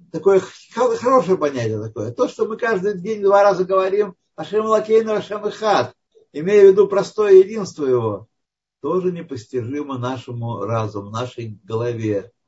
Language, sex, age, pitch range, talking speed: Russian, male, 50-69, 125-180 Hz, 135 wpm